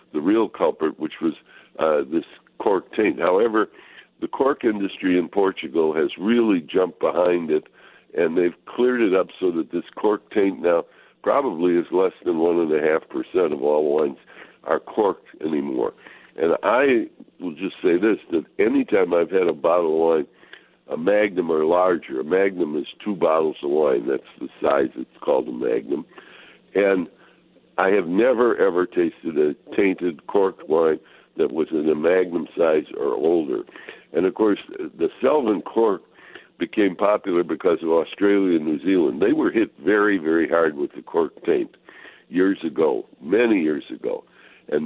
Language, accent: English, American